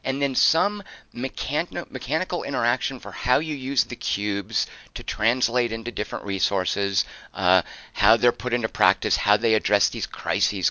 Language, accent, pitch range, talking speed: English, American, 110-160 Hz, 155 wpm